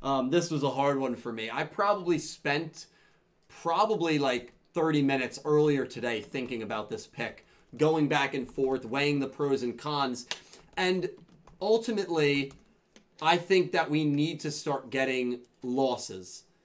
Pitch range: 130-165 Hz